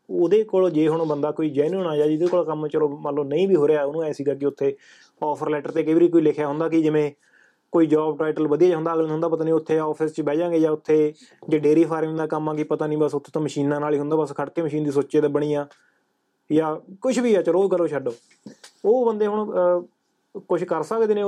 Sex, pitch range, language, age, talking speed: male, 150-180 Hz, Punjabi, 20-39, 210 wpm